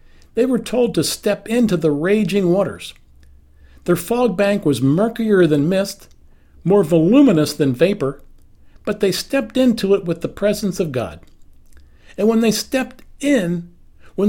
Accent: American